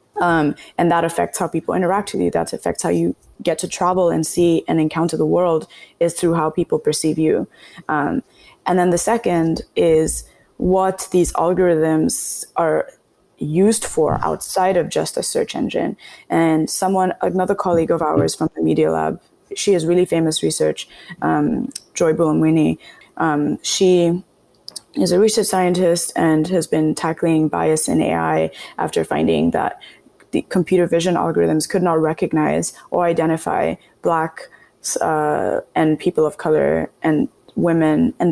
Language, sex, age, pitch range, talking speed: English, female, 20-39, 160-190 Hz, 150 wpm